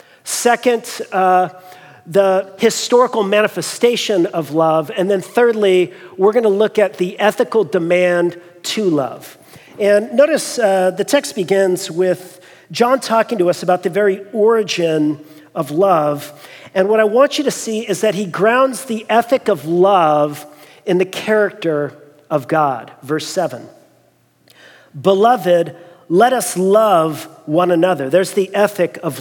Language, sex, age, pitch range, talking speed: English, male, 40-59, 180-220 Hz, 140 wpm